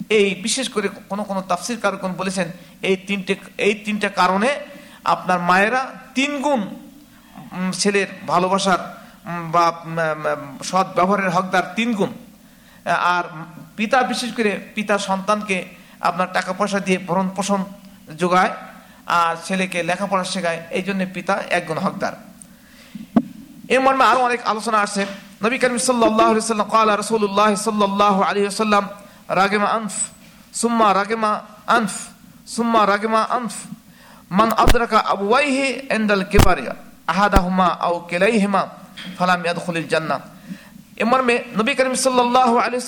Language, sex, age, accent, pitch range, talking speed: Bengali, male, 50-69, native, 195-240 Hz, 80 wpm